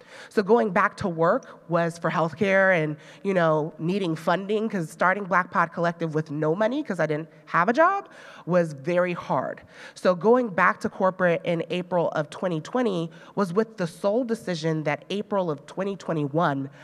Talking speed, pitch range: 170 wpm, 160-200 Hz